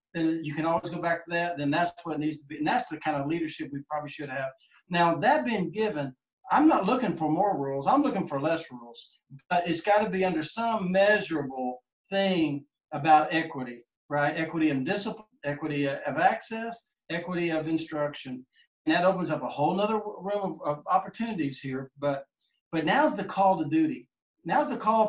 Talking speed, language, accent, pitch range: 195 wpm, English, American, 150-215 Hz